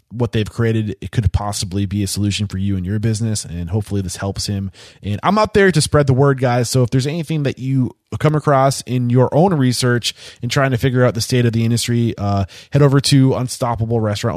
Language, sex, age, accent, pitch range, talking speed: English, male, 20-39, American, 105-130 Hz, 235 wpm